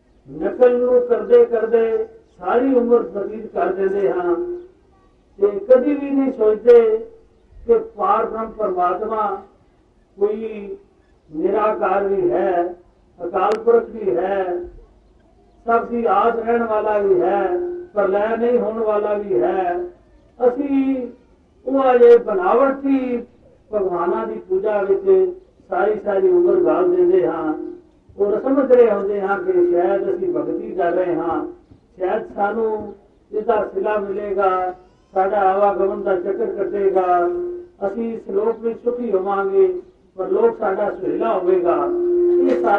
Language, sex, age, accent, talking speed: Hindi, male, 50-69, native, 45 wpm